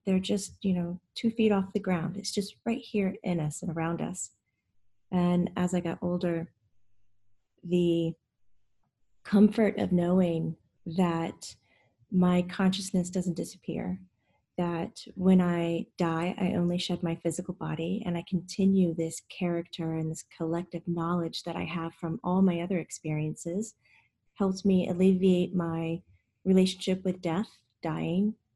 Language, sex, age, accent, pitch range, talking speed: English, female, 30-49, American, 165-195 Hz, 140 wpm